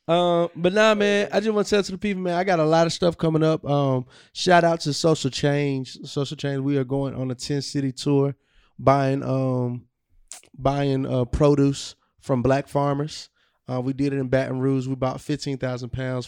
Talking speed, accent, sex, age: 205 wpm, American, male, 20-39